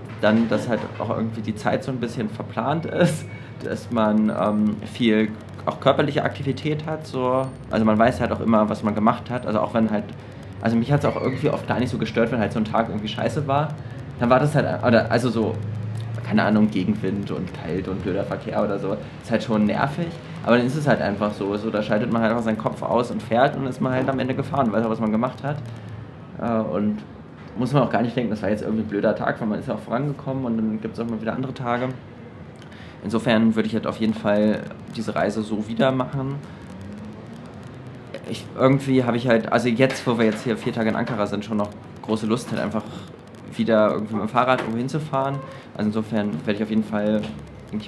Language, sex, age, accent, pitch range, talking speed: German, male, 20-39, German, 105-125 Hz, 230 wpm